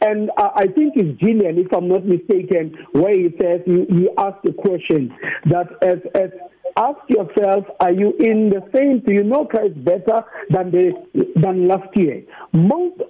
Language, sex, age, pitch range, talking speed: English, male, 50-69, 185-235 Hz, 175 wpm